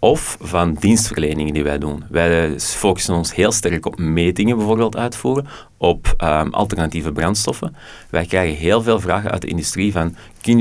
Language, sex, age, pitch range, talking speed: Dutch, male, 30-49, 80-105 Hz, 165 wpm